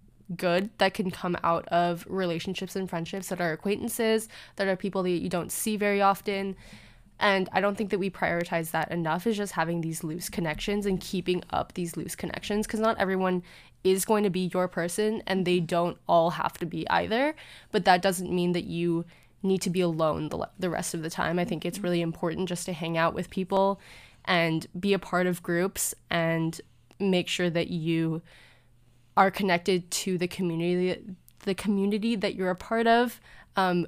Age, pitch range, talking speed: 20-39, 170-195 Hz, 195 wpm